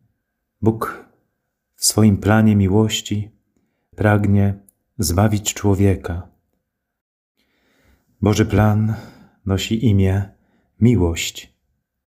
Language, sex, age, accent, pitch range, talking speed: Polish, male, 30-49, native, 90-100 Hz, 65 wpm